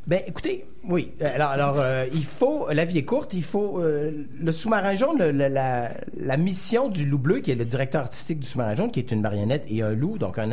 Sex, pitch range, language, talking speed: male, 120-165 Hz, French, 245 wpm